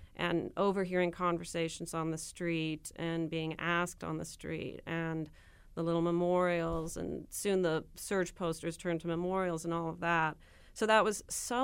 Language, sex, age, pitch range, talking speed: English, female, 40-59, 170-210 Hz, 165 wpm